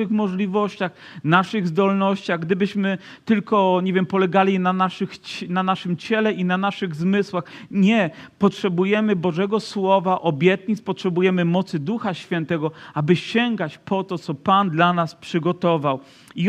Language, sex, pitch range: Polish, male, 175-205 Hz